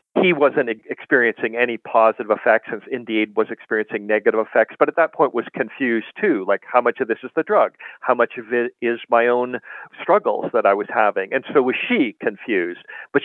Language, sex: English, male